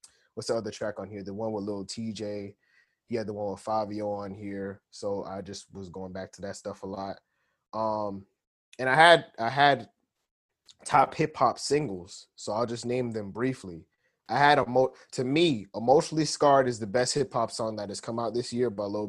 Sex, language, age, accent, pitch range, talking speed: male, English, 20-39, American, 100-125 Hz, 210 wpm